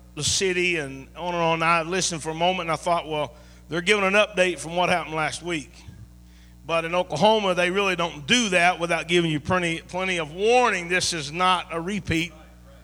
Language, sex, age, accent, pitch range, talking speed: English, male, 50-69, American, 160-195 Hz, 210 wpm